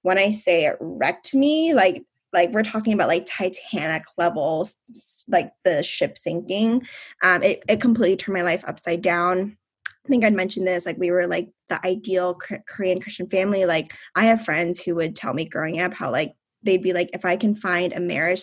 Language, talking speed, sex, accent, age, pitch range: English, 205 wpm, female, American, 10-29, 175-205 Hz